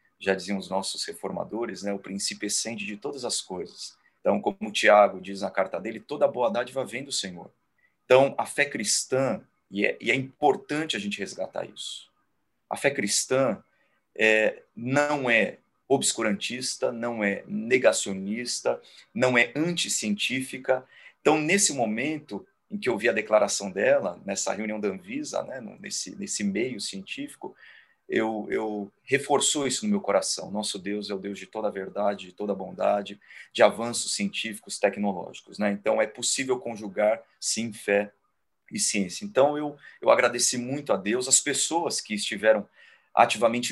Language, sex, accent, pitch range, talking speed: Portuguese, male, Brazilian, 100-135 Hz, 160 wpm